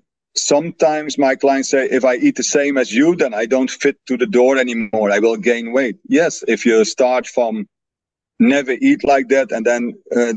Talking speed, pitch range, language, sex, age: 205 wpm, 120-145 Hz, English, male, 40-59